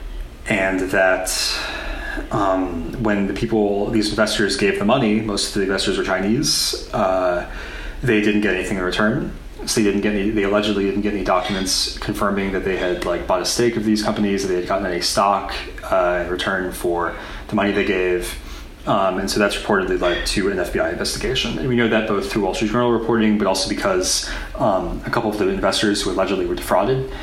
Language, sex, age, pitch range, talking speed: English, male, 30-49, 90-110 Hz, 205 wpm